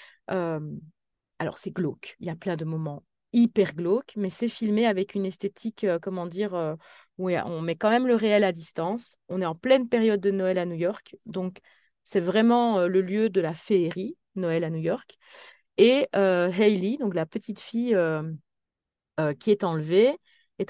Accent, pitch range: French, 170-215 Hz